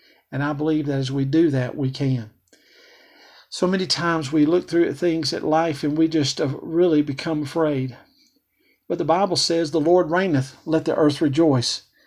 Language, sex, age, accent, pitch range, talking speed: English, male, 50-69, American, 140-165 Hz, 185 wpm